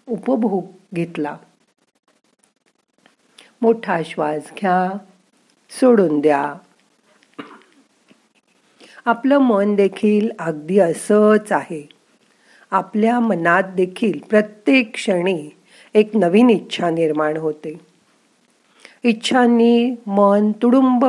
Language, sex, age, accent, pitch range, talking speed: Marathi, female, 50-69, native, 175-230 Hz, 55 wpm